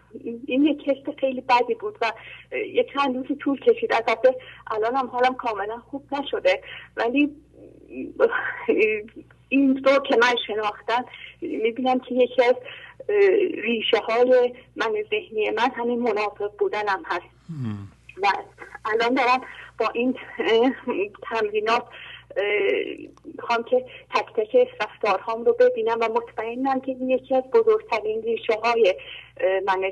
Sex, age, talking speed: female, 30-49, 125 wpm